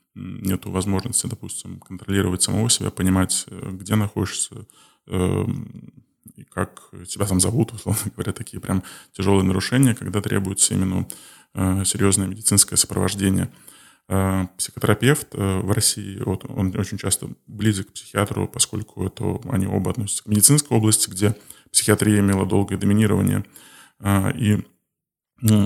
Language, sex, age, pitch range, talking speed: Russian, male, 20-39, 95-110 Hz, 125 wpm